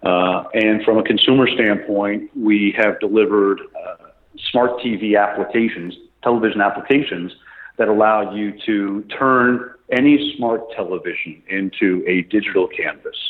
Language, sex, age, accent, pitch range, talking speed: English, male, 40-59, American, 100-120 Hz, 120 wpm